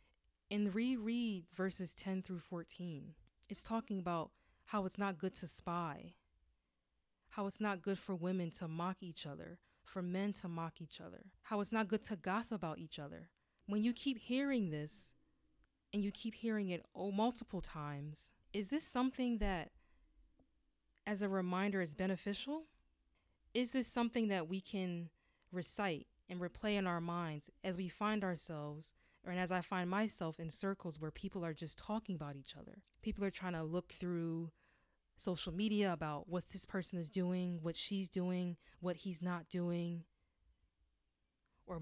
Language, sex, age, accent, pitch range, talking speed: English, female, 20-39, American, 165-205 Hz, 165 wpm